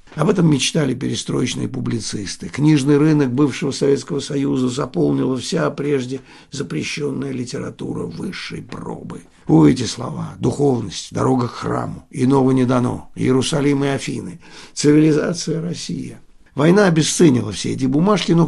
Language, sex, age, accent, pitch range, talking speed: Russian, male, 60-79, native, 130-160 Hz, 125 wpm